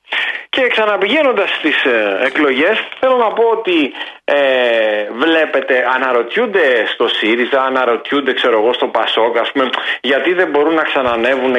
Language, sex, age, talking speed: Greek, male, 40-59, 125 wpm